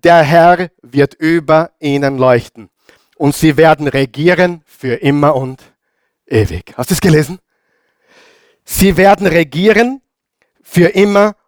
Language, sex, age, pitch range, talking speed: German, male, 50-69, 140-205 Hz, 120 wpm